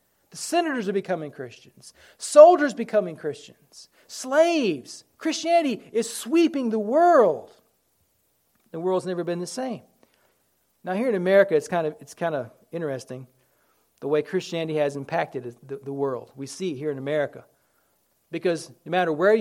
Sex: male